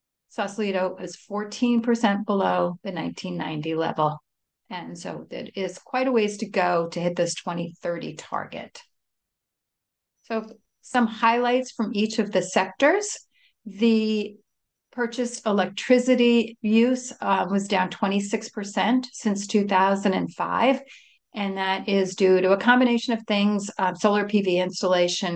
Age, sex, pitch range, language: 40-59, female, 180-220 Hz, English